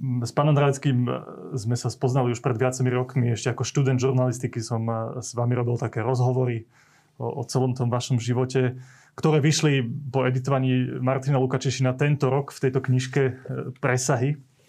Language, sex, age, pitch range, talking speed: Slovak, male, 30-49, 130-150 Hz, 150 wpm